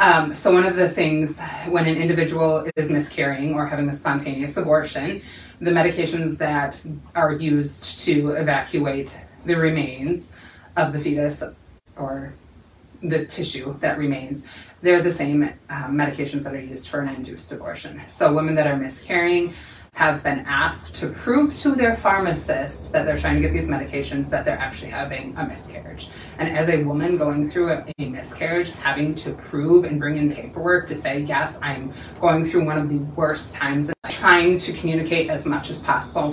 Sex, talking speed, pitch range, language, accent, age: female, 175 wpm, 145-170 Hz, English, American, 20-39